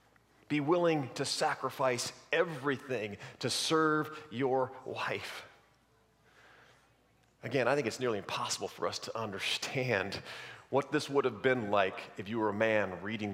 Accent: American